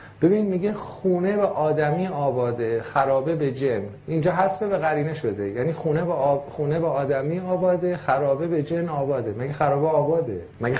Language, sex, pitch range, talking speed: Persian, male, 125-165 Hz, 180 wpm